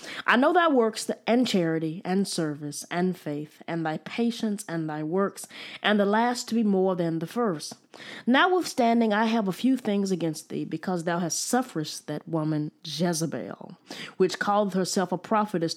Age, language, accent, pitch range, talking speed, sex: 20-39, English, American, 170-235 Hz, 170 wpm, female